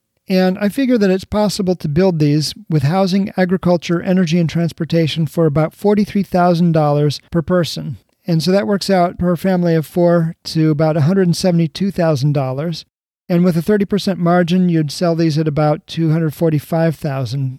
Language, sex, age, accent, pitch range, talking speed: English, male, 40-59, American, 155-185 Hz, 145 wpm